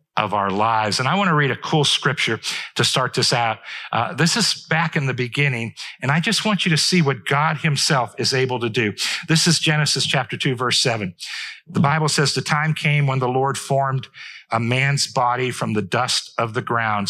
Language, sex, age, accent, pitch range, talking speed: English, male, 50-69, American, 115-145 Hz, 220 wpm